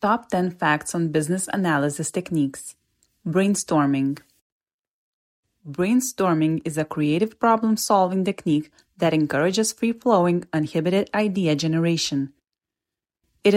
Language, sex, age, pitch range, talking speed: English, female, 30-49, 155-205 Hz, 95 wpm